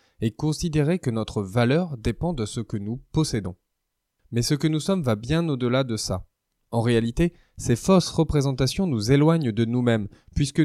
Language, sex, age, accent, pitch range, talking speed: French, male, 20-39, French, 110-150 Hz, 175 wpm